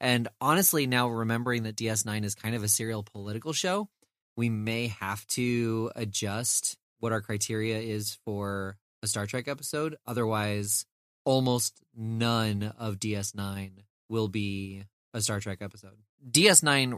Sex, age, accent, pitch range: male, 20-39, American, 105-115 Hz